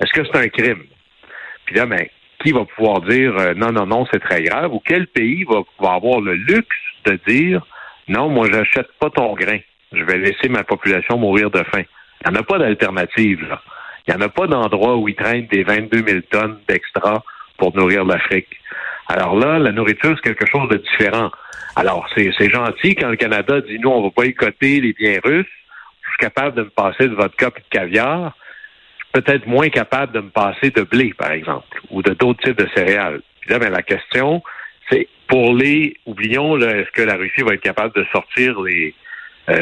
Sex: male